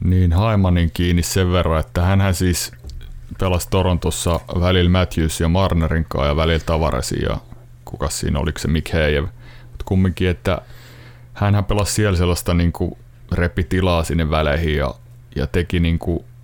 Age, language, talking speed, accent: 30-49, Finnish, 140 wpm, native